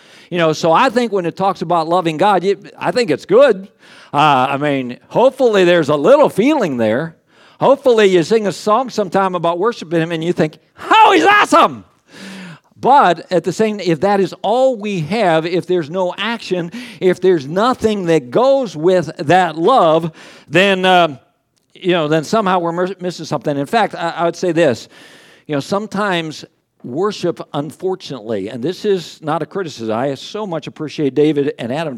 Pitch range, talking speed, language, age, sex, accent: 145-185 Hz, 180 wpm, English, 50-69, male, American